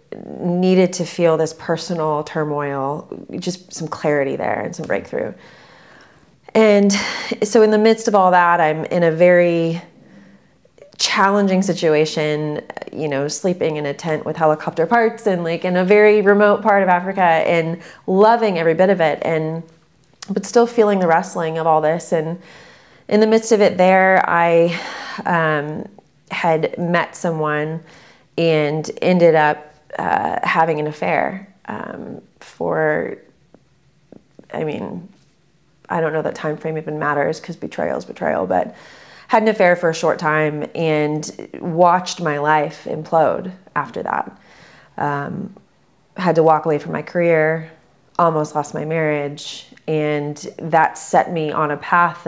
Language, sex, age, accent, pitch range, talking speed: English, female, 30-49, American, 155-185 Hz, 150 wpm